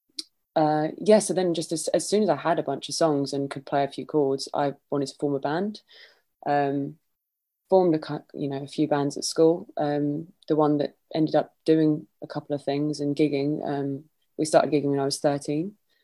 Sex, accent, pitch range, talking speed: female, British, 140-155 Hz, 215 wpm